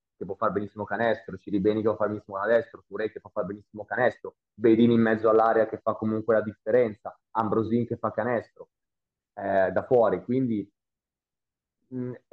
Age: 30-49